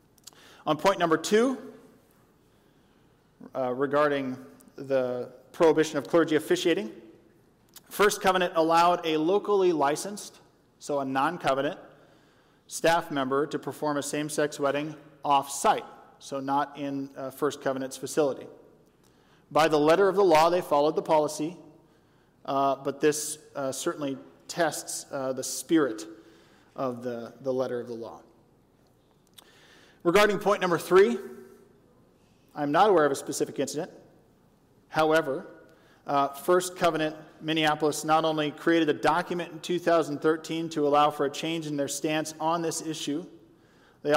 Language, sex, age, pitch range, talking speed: English, male, 40-59, 140-165 Hz, 130 wpm